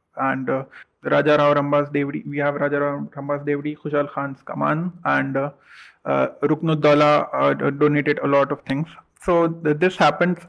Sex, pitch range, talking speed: male, 145-165 Hz, 165 wpm